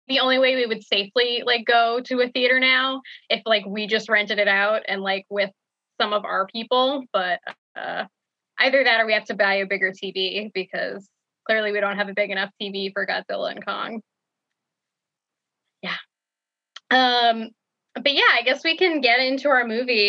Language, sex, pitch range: English, female, 205-260 Hz